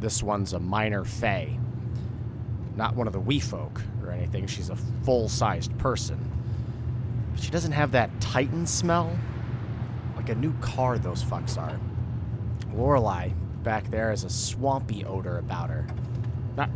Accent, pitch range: American, 110-120 Hz